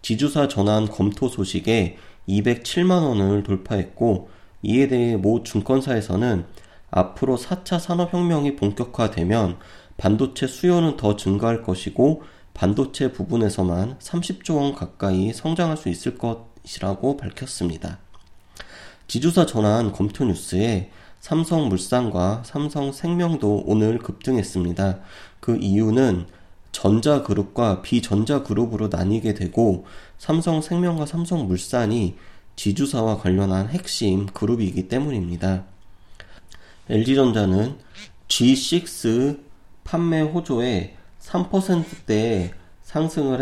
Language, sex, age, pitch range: Korean, male, 30-49, 95-130 Hz